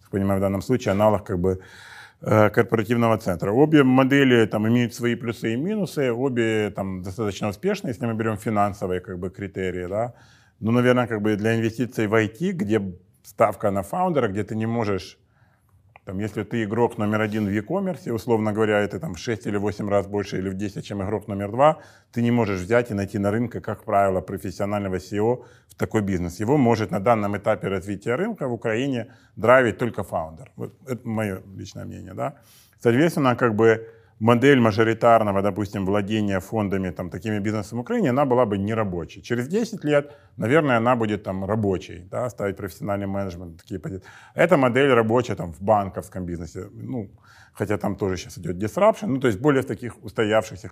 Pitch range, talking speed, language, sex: 100-120 Hz, 180 wpm, Ukrainian, male